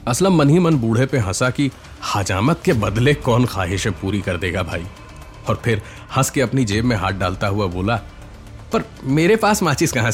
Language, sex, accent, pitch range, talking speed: Hindi, male, native, 105-145 Hz, 195 wpm